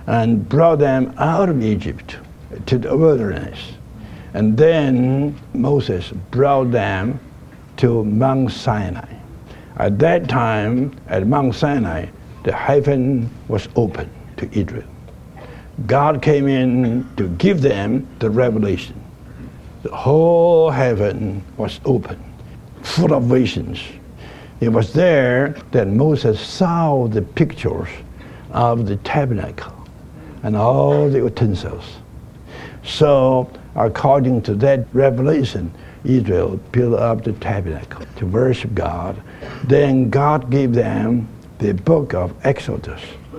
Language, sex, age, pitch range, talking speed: English, male, 60-79, 110-140 Hz, 110 wpm